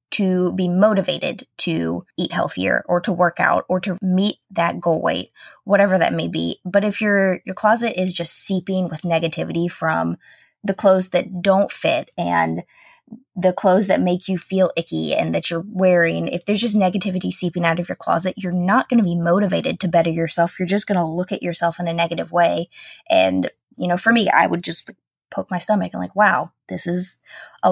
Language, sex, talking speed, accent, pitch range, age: English, female, 200 wpm, American, 170-200 Hz, 20-39